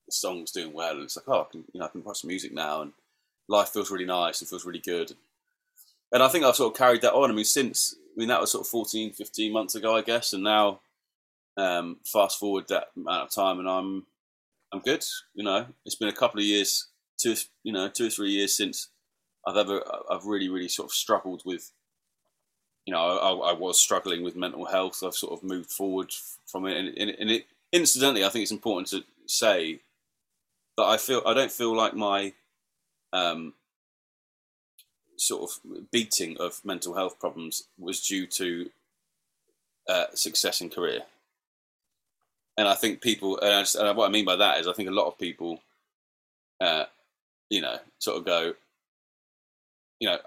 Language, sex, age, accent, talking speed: English, male, 20-39, British, 195 wpm